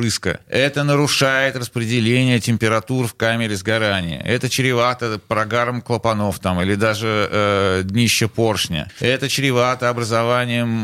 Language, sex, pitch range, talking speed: Russian, male, 105-135 Hz, 110 wpm